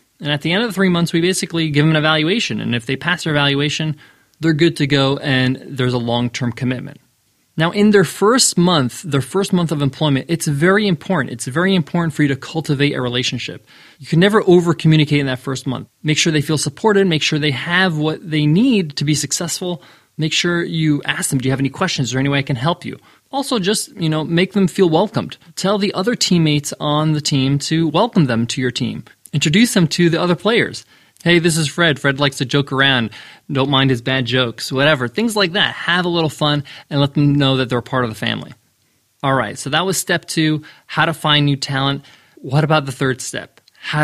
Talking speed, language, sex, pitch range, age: 230 wpm, English, male, 135-170 Hz, 20-39